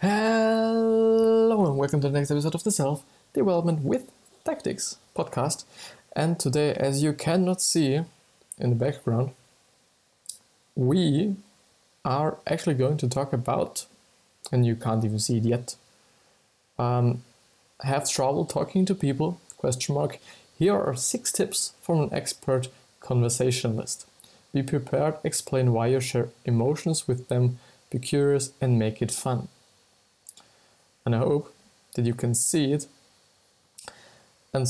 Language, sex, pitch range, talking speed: English, male, 120-145 Hz, 135 wpm